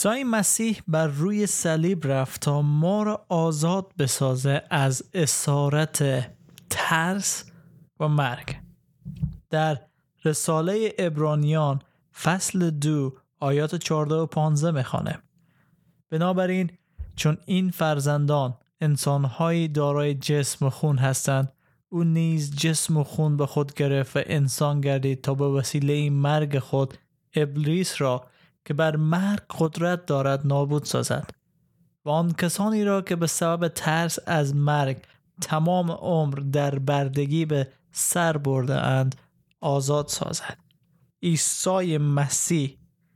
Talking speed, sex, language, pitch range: 115 wpm, male, Persian, 145-170 Hz